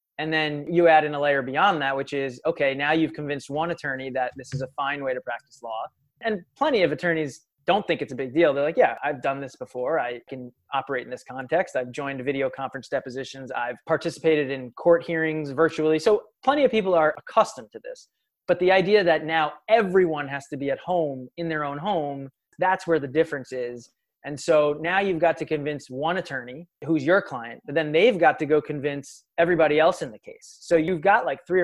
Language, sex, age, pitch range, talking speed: English, male, 20-39, 135-170 Hz, 220 wpm